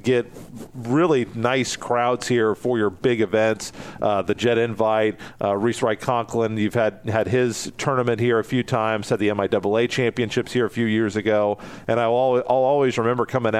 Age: 40-59